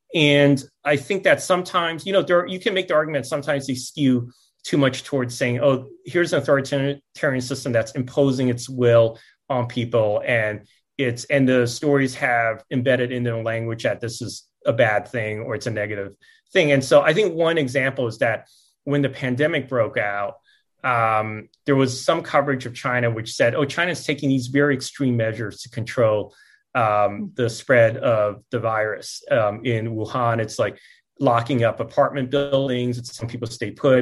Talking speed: 185 wpm